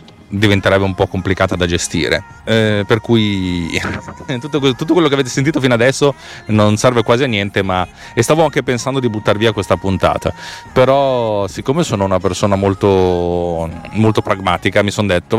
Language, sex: Italian, male